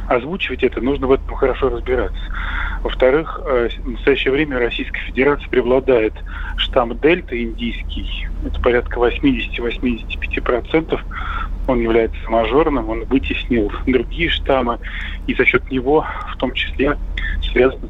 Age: 20-39